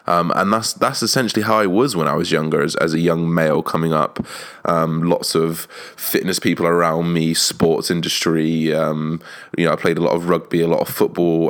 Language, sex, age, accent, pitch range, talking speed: English, male, 20-39, British, 80-100 Hz, 215 wpm